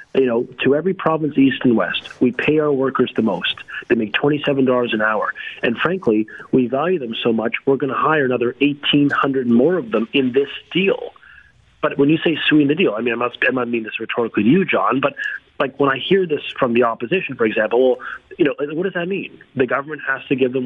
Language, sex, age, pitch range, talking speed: English, male, 30-49, 125-150 Hz, 230 wpm